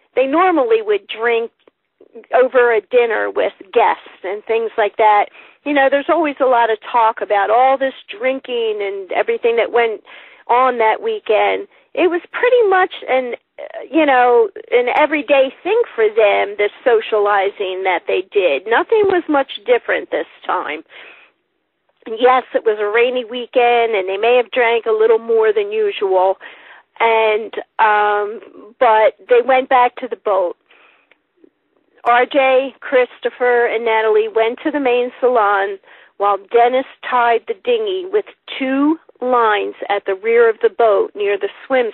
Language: English